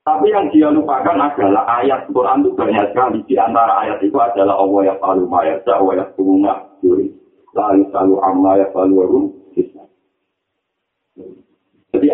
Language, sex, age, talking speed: Malay, male, 50-69, 140 wpm